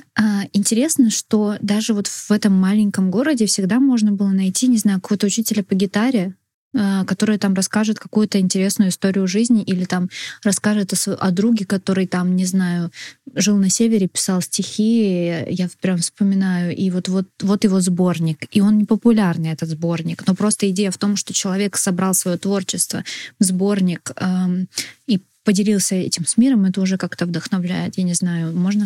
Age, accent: 20-39, native